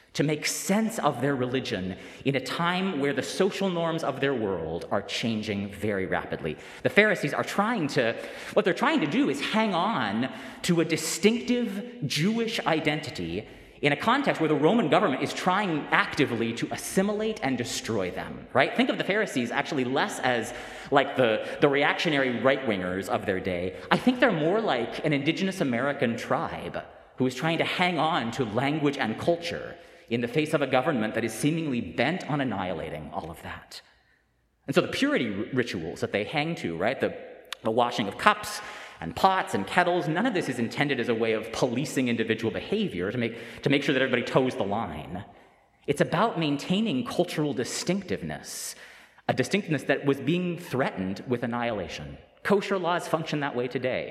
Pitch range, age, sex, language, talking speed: 120-175 Hz, 30-49, male, English, 180 wpm